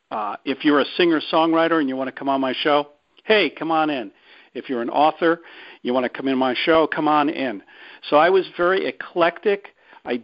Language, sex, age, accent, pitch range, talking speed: English, male, 50-69, American, 120-160 Hz, 215 wpm